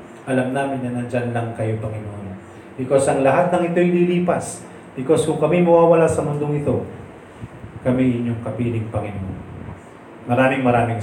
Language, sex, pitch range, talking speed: Filipino, male, 110-135 Hz, 140 wpm